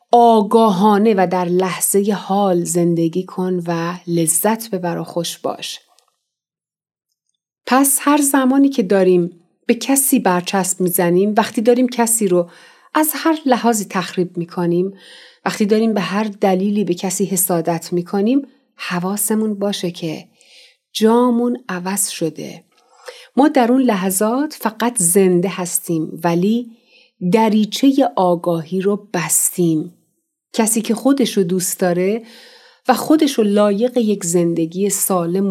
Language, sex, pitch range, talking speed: Persian, female, 180-240 Hz, 120 wpm